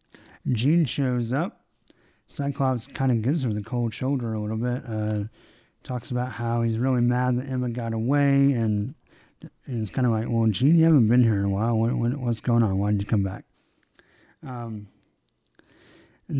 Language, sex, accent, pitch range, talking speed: English, male, American, 115-140 Hz, 185 wpm